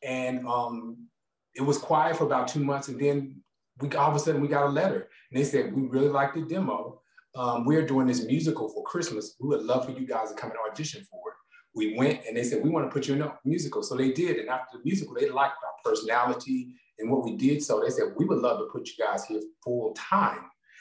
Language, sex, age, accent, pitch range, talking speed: English, male, 30-49, American, 125-170 Hz, 255 wpm